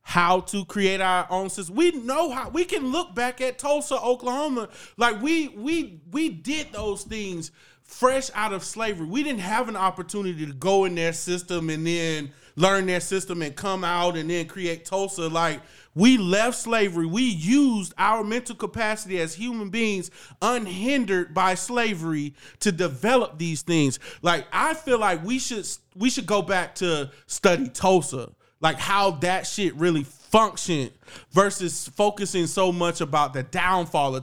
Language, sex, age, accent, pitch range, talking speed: English, male, 30-49, American, 165-230 Hz, 165 wpm